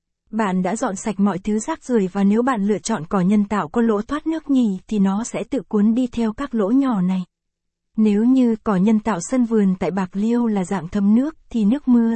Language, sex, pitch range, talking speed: Vietnamese, female, 200-235 Hz, 240 wpm